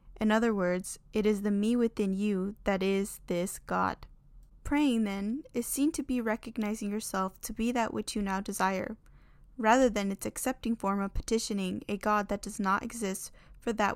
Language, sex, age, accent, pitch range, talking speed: English, female, 10-29, American, 205-240 Hz, 185 wpm